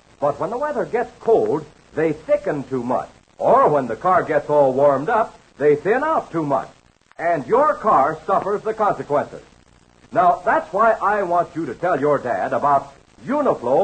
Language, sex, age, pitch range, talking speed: English, male, 60-79, 160-260 Hz, 180 wpm